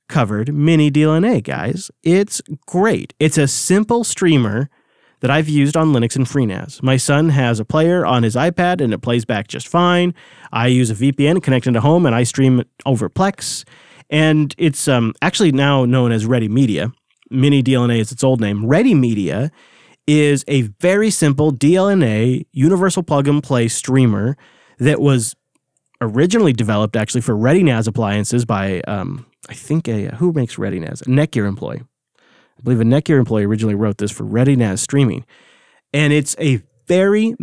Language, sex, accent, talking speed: English, male, American, 165 wpm